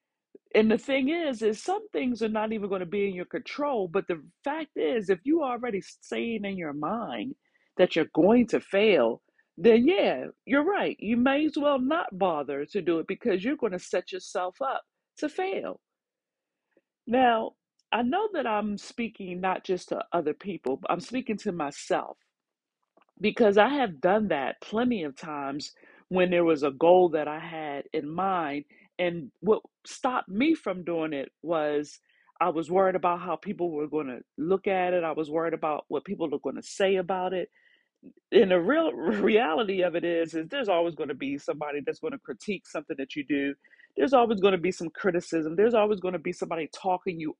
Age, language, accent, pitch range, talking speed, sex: 50-69, English, American, 165-240 Hz, 200 wpm, female